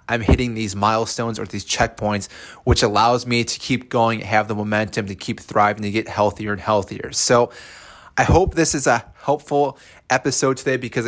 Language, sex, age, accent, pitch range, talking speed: English, male, 20-39, American, 110-125 Hz, 185 wpm